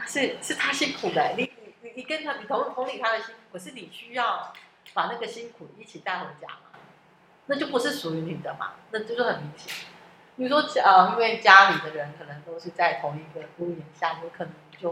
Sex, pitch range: female, 165-225 Hz